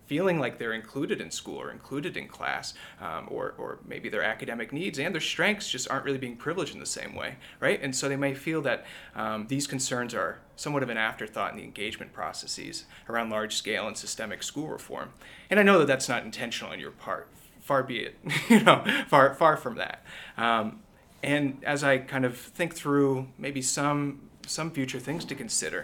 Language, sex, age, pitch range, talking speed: English, male, 30-49, 115-140 Hz, 205 wpm